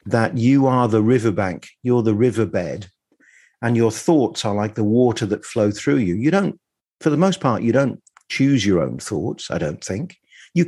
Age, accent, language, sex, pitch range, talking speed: 50-69, British, English, male, 105-125 Hz, 195 wpm